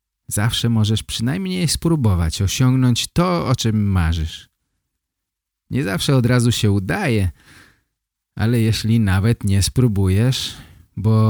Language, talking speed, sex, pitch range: Polish, 110 wpm, male, 95-130 Hz